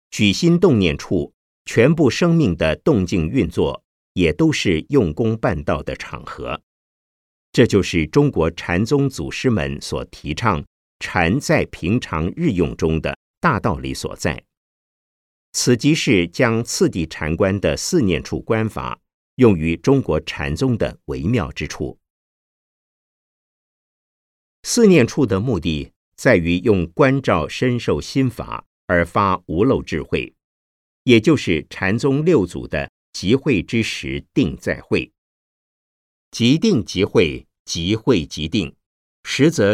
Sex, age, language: male, 50-69, Chinese